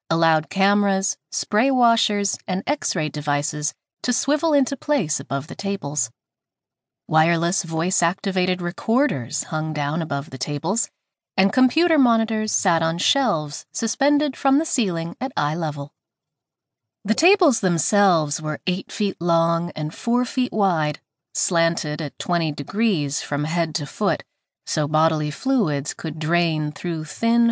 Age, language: 30-49, English